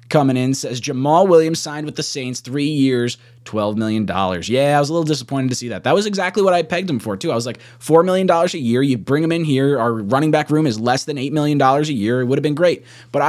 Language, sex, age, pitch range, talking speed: English, male, 20-39, 120-155 Hz, 285 wpm